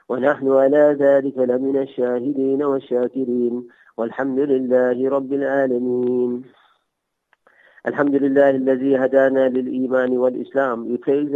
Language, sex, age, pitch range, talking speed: English, male, 50-69, 130-140 Hz, 95 wpm